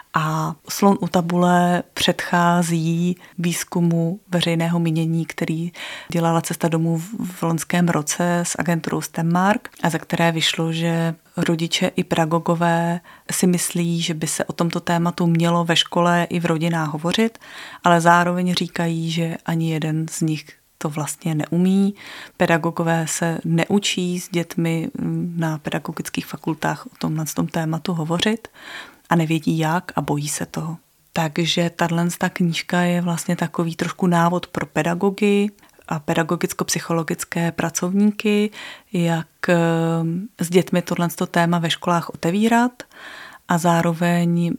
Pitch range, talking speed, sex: 165-180 Hz, 125 wpm, female